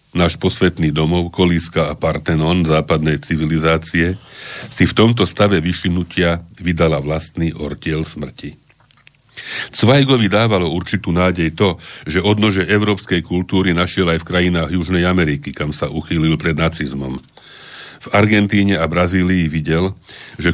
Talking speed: 125 wpm